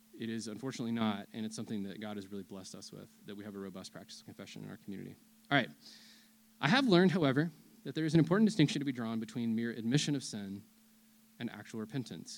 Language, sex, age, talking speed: English, male, 20-39, 235 wpm